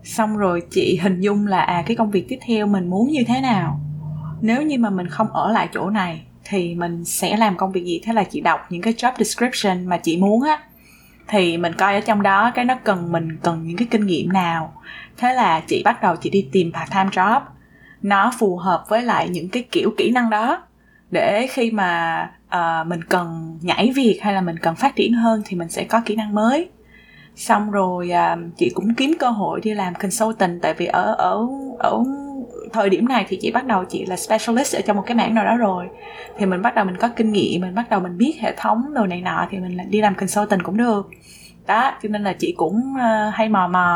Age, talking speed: 20-39, 235 wpm